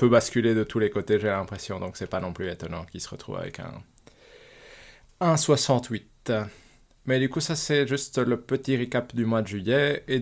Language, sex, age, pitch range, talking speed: French, male, 20-39, 105-135 Hz, 195 wpm